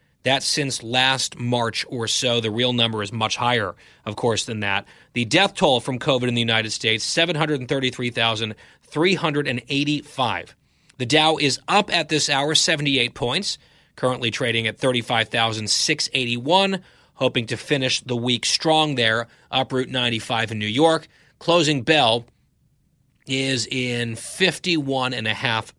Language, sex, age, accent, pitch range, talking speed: English, male, 30-49, American, 115-155 Hz, 135 wpm